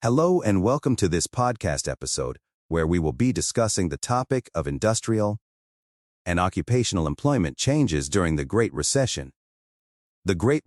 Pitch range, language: 75-115 Hz, English